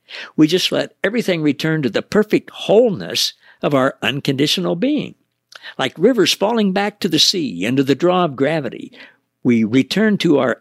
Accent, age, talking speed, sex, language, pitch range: American, 60-79, 165 wpm, male, English, 125-200 Hz